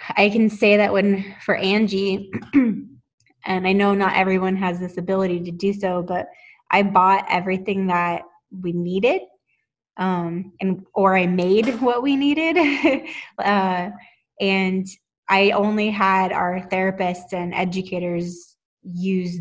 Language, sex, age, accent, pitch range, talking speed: English, female, 20-39, American, 180-200 Hz, 135 wpm